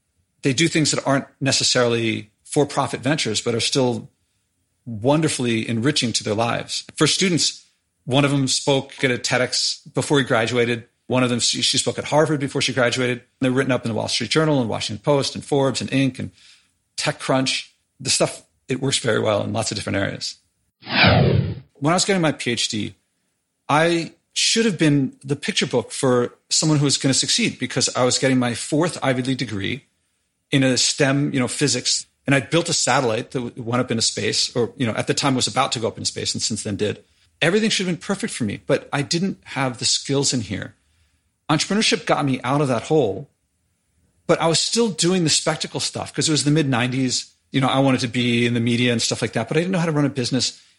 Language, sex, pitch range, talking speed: English, male, 115-145 Hz, 220 wpm